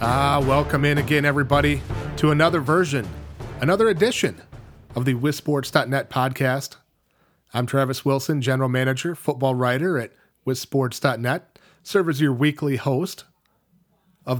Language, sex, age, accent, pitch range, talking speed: English, male, 30-49, American, 130-155 Hz, 120 wpm